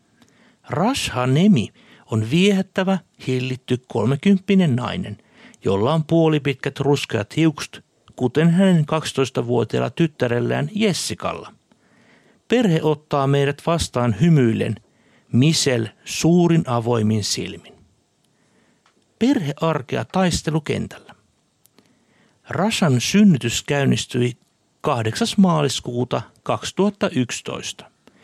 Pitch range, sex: 125-170 Hz, male